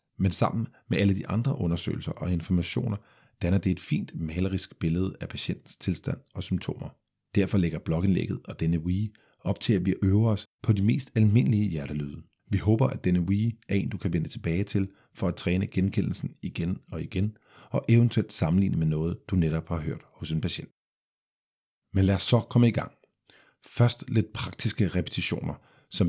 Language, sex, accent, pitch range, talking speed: Danish, male, native, 90-115 Hz, 185 wpm